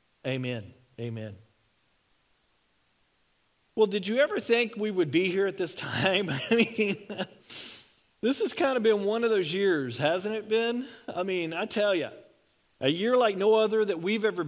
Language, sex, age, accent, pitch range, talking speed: English, male, 40-59, American, 155-210 Hz, 170 wpm